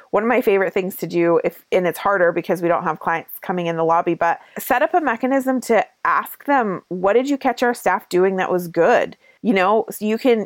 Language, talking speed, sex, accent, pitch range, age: English, 245 wpm, female, American, 170-225 Hz, 30-49